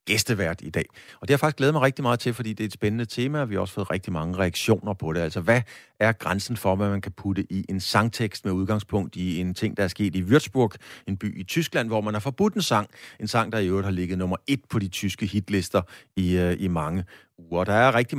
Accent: native